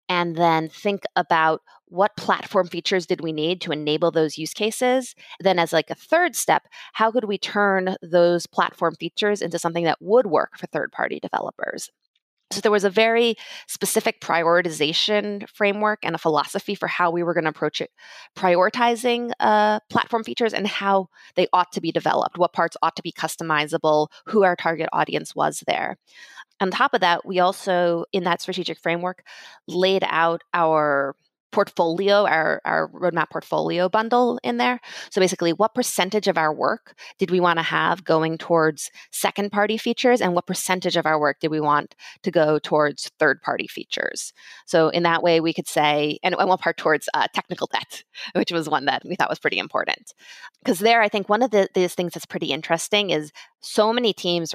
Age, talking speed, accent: 20-39, 185 wpm, American